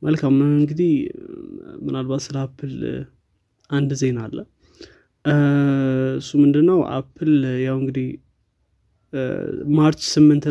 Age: 20-39